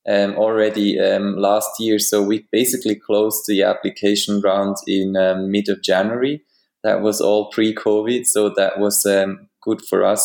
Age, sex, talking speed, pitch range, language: 20-39, male, 170 wpm, 100-110 Hz, English